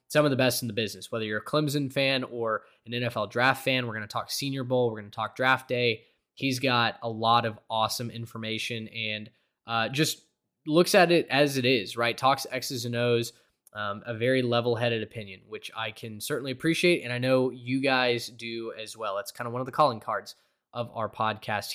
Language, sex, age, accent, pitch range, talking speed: English, male, 10-29, American, 115-140 Hz, 220 wpm